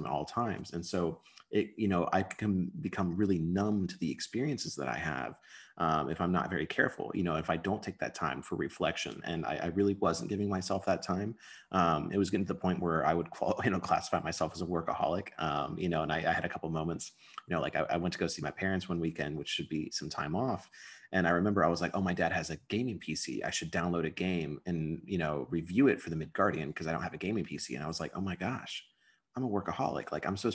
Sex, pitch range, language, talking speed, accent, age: male, 80-95 Hz, English, 265 wpm, American, 30-49